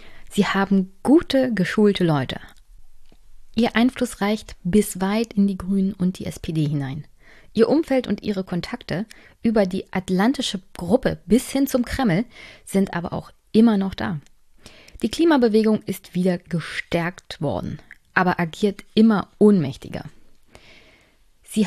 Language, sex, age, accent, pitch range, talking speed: German, female, 20-39, German, 175-220 Hz, 130 wpm